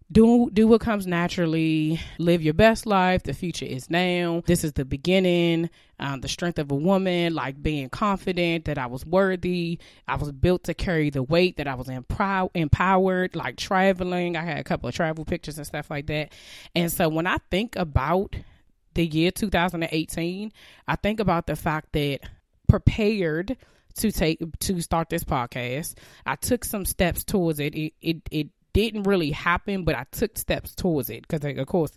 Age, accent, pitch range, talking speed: 20-39, American, 145-175 Hz, 180 wpm